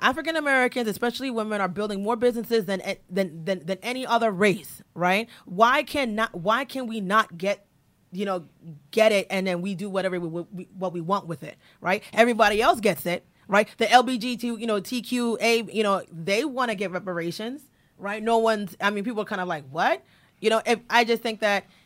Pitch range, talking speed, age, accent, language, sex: 180-225 Hz, 220 wpm, 20-39, American, English, female